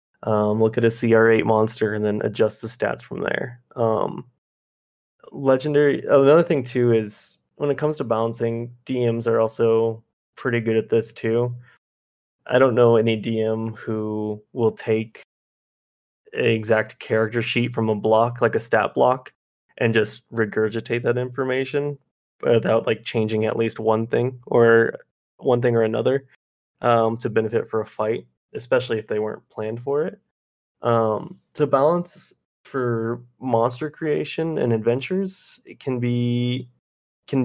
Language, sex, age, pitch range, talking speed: English, male, 20-39, 110-120 Hz, 150 wpm